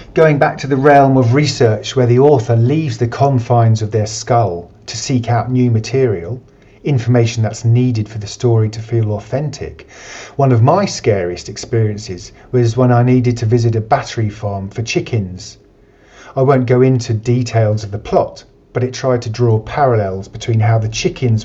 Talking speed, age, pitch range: 180 wpm, 40-59, 110-130 Hz